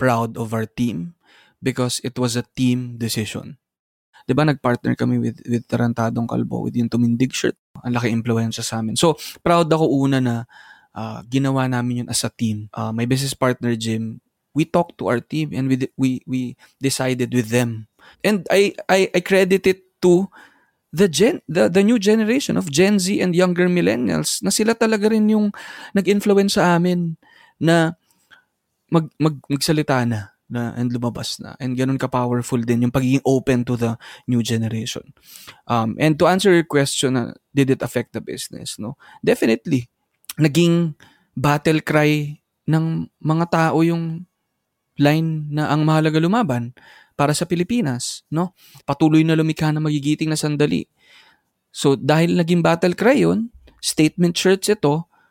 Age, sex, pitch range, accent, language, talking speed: 20-39, male, 120-170 Hz, native, Filipino, 160 wpm